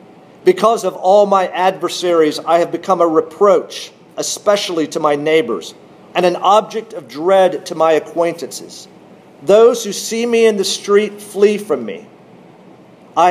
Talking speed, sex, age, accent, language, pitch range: 150 wpm, male, 50-69, American, English, 160-200 Hz